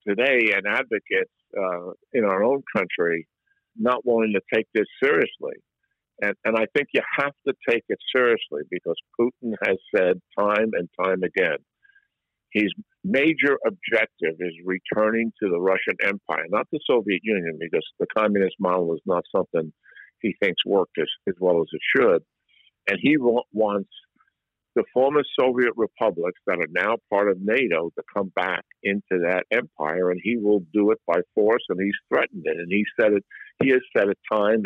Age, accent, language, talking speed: 60-79, American, English, 175 wpm